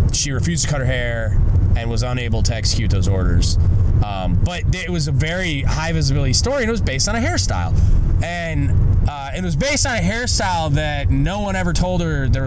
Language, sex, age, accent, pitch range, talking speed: English, male, 20-39, American, 95-115 Hz, 210 wpm